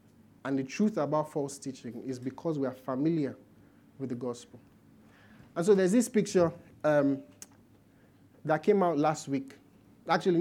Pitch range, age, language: 130-170 Hz, 30-49, English